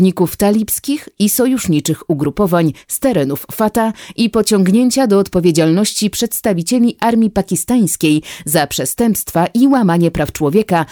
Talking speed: 110 wpm